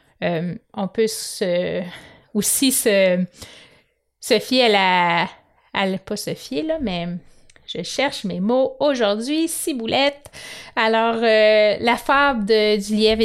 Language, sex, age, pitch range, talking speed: French, female, 30-49, 205-275 Hz, 125 wpm